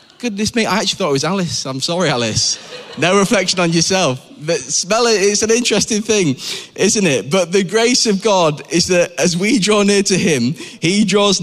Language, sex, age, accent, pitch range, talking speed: English, male, 20-39, British, 115-175 Hz, 205 wpm